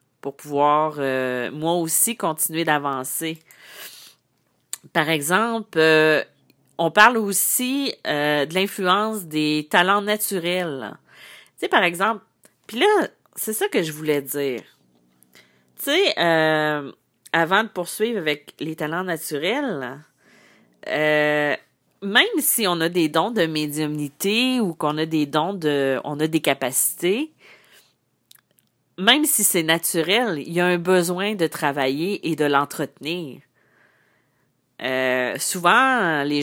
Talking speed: 125 wpm